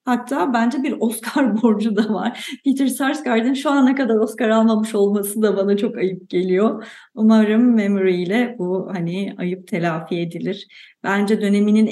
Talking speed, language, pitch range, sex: 150 wpm, Turkish, 185-240 Hz, female